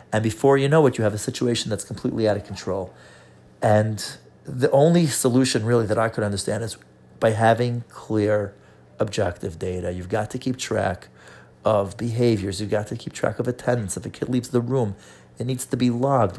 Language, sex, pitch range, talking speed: English, male, 100-120 Hz, 200 wpm